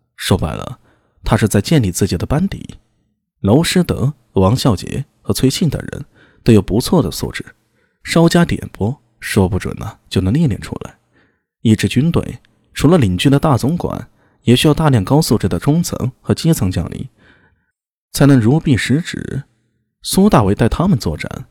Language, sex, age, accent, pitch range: Chinese, male, 20-39, native, 105-140 Hz